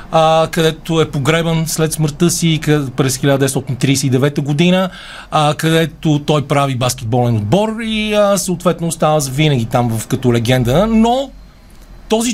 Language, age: Bulgarian, 40-59